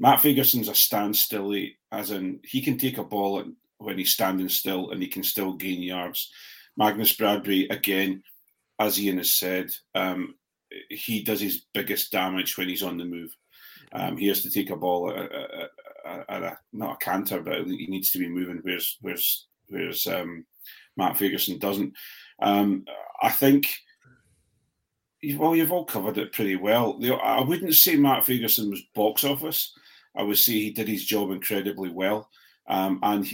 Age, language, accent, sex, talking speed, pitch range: 40-59, English, British, male, 170 wpm, 95-115 Hz